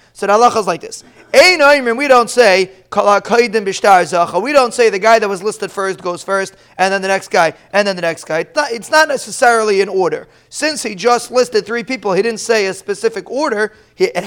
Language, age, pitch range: English, 30-49, 200-255 Hz